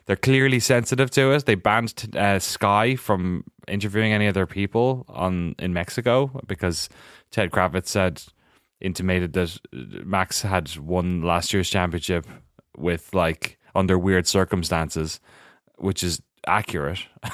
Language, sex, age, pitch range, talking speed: English, male, 20-39, 90-120 Hz, 130 wpm